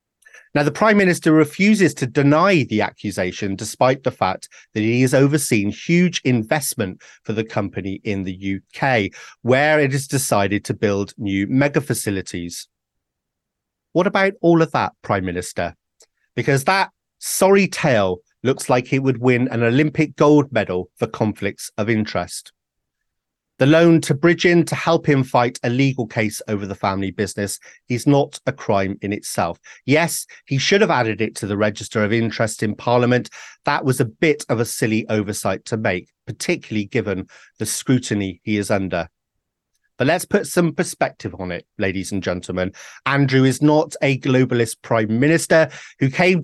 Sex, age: male, 30-49